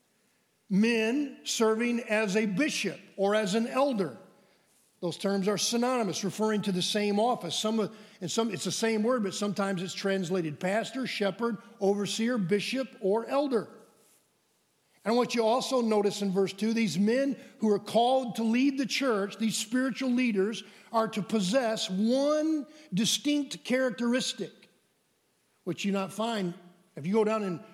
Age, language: 50-69, English